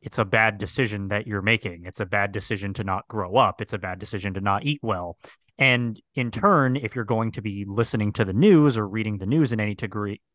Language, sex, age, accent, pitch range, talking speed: English, male, 30-49, American, 105-125 Hz, 245 wpm